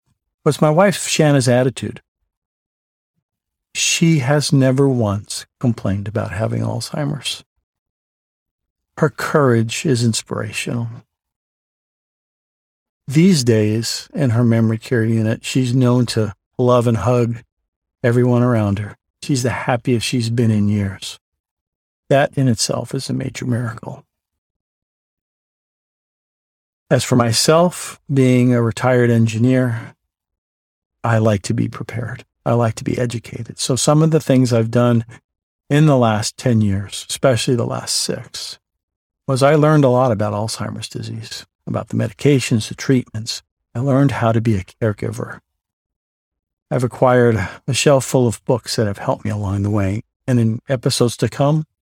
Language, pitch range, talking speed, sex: English, 105-130 Hz, 140 wpm, male